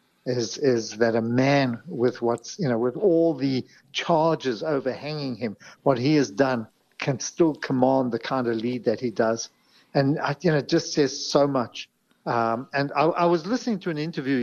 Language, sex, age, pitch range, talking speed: English, male, 50-69, 125-150 Hz, 190 wpm